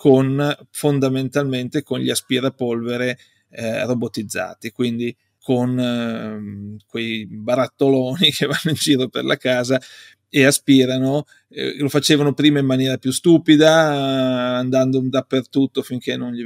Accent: native